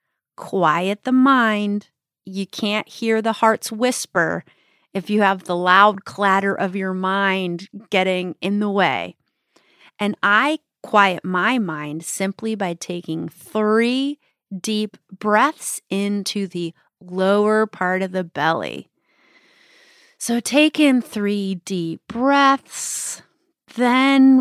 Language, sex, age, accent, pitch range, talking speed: English, female, 30-49, American, 185-235 Hz, 115 wpm